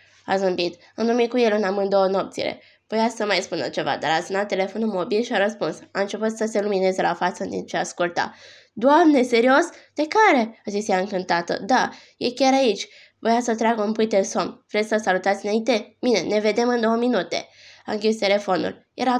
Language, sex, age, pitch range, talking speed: Romanian, female, 20-39, 190-230 Hz, 200 wpm